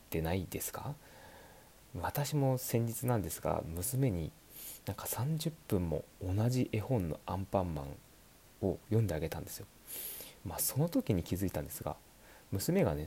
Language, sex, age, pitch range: Japanese, male, 30-49, 90-140 Hz